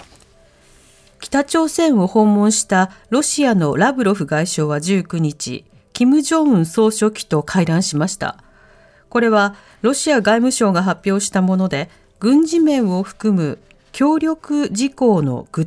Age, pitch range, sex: 40-59, 180-250 Hz, female